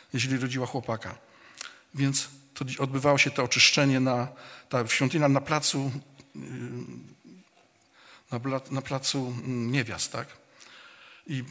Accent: native